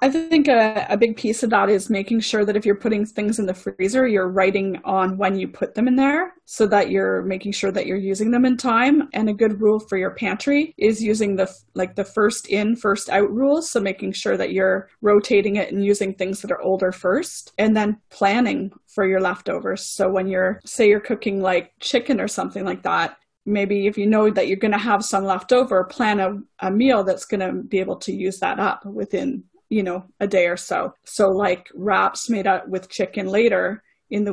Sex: female